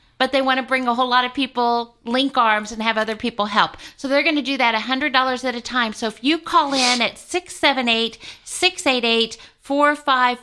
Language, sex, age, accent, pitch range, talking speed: English, female, 50-69, American, 230-280 Hz, 240 wpm